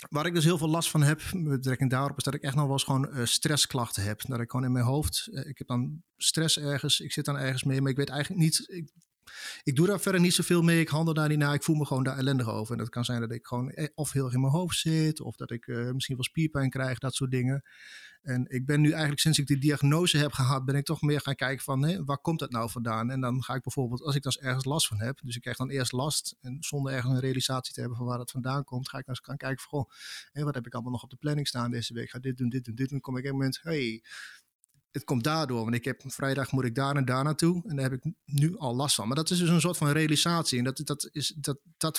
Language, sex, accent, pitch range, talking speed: Dutch, male, Dutch, 125-150 Hz, 305 wpm